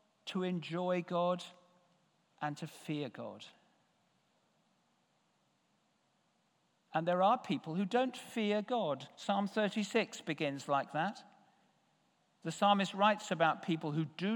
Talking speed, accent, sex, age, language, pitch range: 115 wpm, British, male, 50-69, English, 180-235 Hz